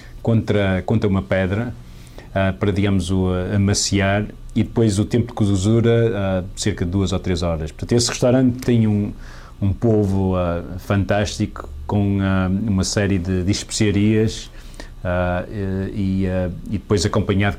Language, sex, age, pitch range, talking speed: English, male, 40-59, 90-110 Hz, 155 wpm